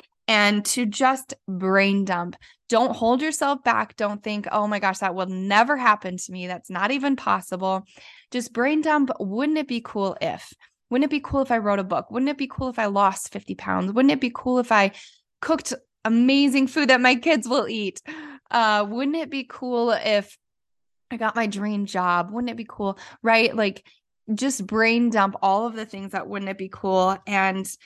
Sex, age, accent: female, 10-29, American